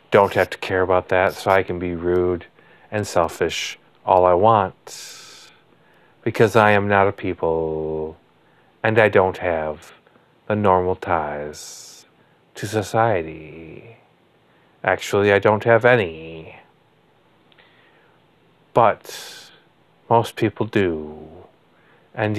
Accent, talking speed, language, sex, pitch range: American, 110 wpm, English, male, 85-105 Hz